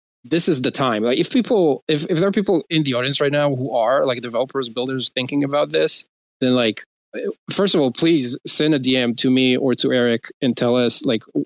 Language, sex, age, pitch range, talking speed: English, male, 20-39, 115-145 Hz, 225 wpm